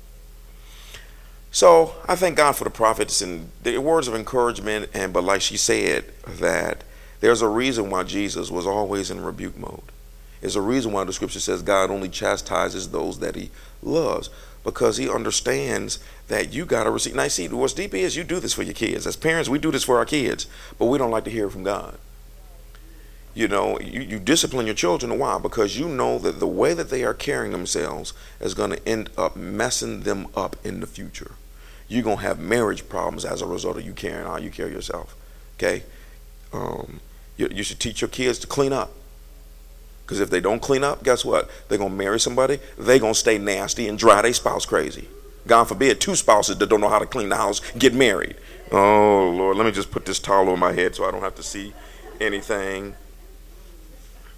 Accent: American